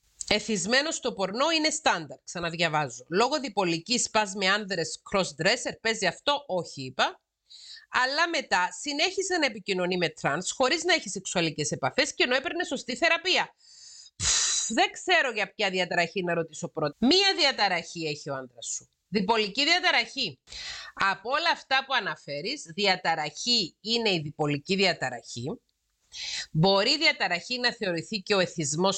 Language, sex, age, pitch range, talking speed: Greek, female, 30-49, 175-265 Hz, 140 wpm